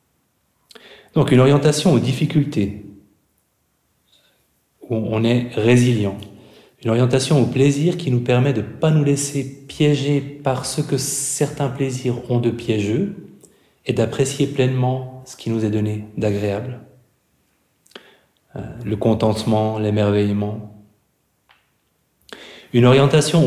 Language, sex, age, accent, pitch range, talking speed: French, male, 30-49, French, 105-130 Hz, 115 wpm